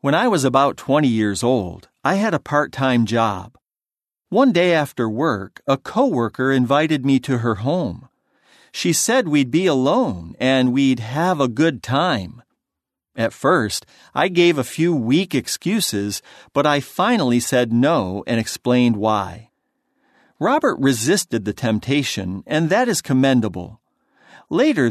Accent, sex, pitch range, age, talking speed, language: American, male, 115-160 Hz, 50-69, 140 wpm, English